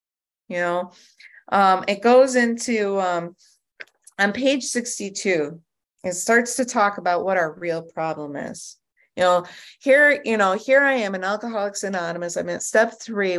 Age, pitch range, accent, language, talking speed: 30-49, 175-245 Hz, American, English, 155 wpm